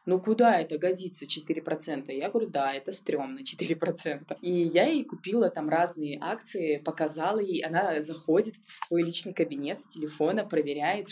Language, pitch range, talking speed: Russian, 160-215 Hz, 155 wpm